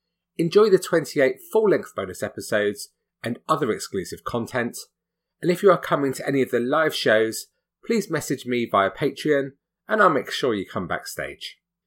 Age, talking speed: 30-49, 165 wpm